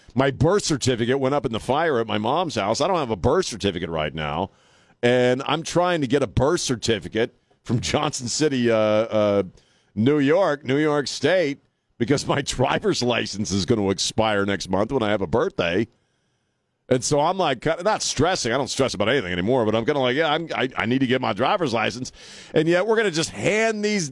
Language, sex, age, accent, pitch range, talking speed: English, male, 40-59, American, 110-160 Hz, 220 wpm